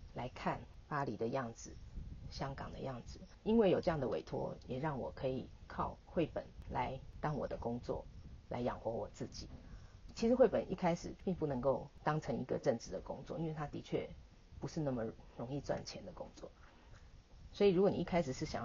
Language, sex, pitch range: Chinese, female, 115-155 Hz